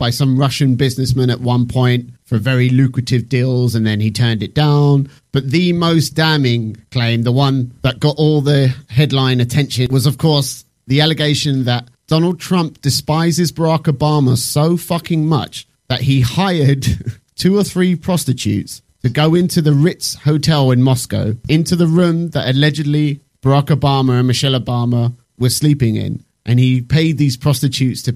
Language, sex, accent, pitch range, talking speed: English, male, British, 125-150 Hz, 165 wpm